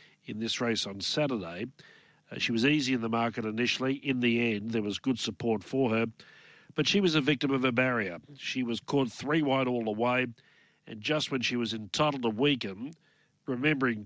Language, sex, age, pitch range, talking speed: English, male, 50-69, 110-135 Hz, 200 wpm